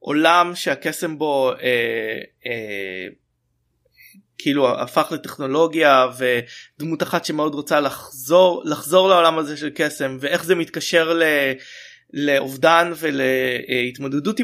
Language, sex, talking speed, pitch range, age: Hebrew, male, 100 wpm, 130-170 Hz, 20-39